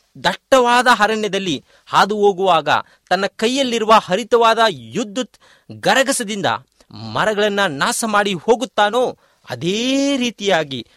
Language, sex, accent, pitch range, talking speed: Kannada, male, native, 175-240 Hz, 80 wpm